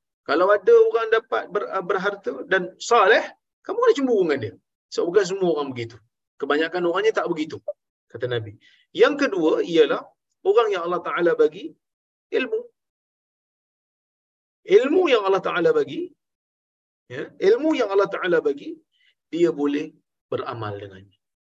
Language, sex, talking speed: Malayalam, male, 135 wpm